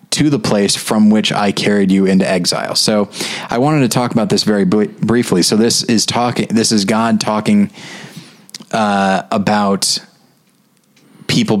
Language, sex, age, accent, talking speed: English, male, 20-39, American, 160 wpm